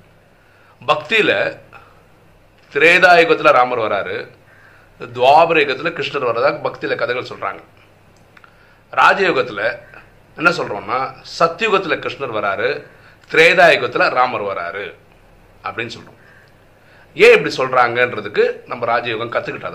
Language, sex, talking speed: Tamil, male, 90 wpm